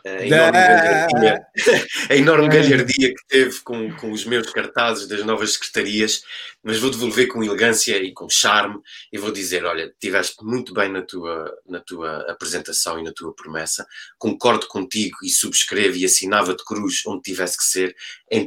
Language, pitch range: Portuguese, 105-135 Hz